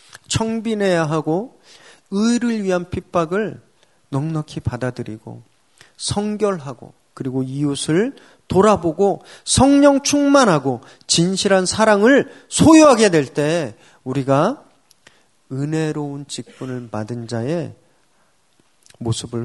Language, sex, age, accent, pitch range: Korean, male, 40-59, native, 135-200 Hz